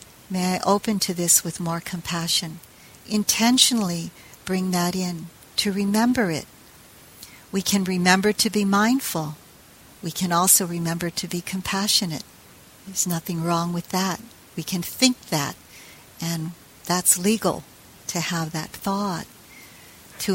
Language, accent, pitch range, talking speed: English, American, 170-200 Hz, 135 wpm